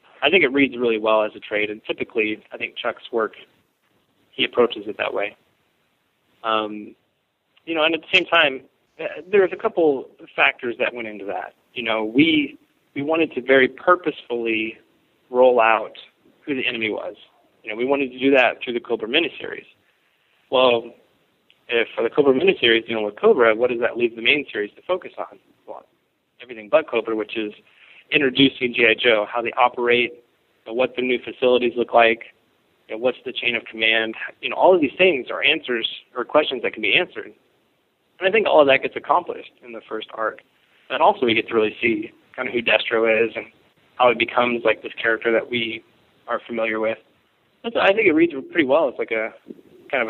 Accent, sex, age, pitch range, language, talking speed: American, male, 30-49, 115-155 Hz, English, 200 wpm